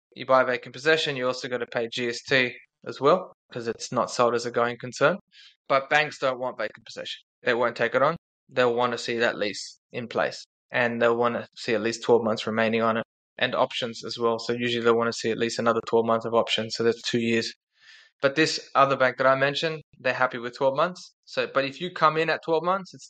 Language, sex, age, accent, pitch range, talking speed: English, male, 20-39, Australian, 120-150 Hz, 245 wpm